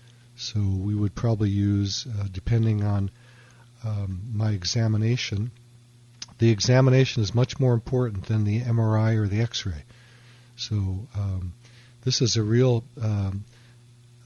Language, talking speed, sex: English, 130 wpm, male